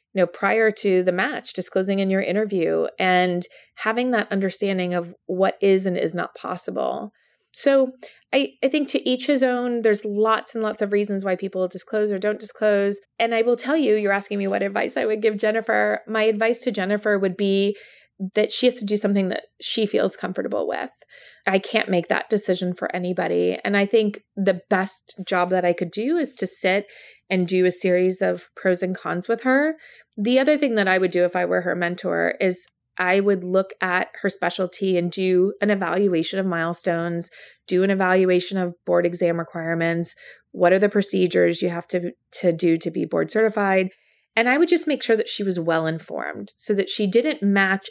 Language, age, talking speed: English, 20-39, 205 wpm